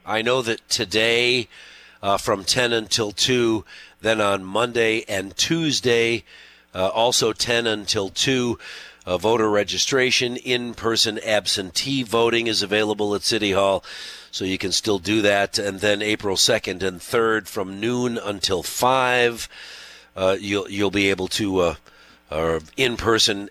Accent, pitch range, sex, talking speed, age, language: American, 95-115 Hz, male, 140 wpm, 40-59, English